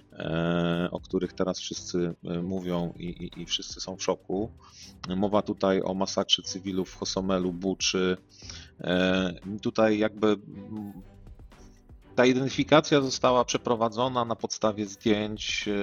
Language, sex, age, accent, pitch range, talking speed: Polish, male, 30-49, native, 95-115 Hz, 110 wpm